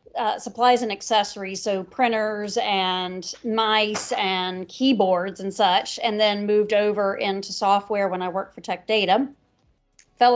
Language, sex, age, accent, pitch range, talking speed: English, female, 30-49, American, 195-240 Hz, 145 wpm